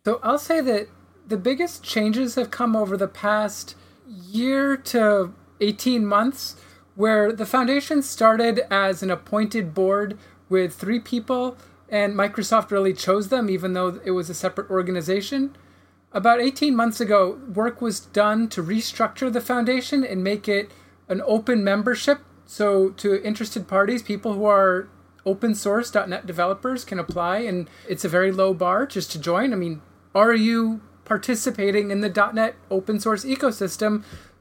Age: 30-49